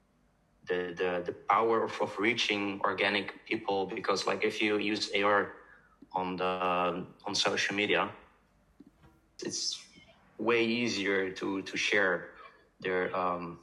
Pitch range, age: 100-120 Hz, 30-49